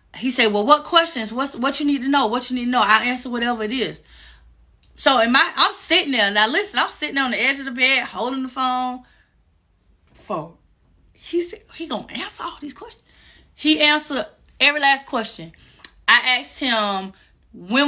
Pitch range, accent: 210-280 Hz, American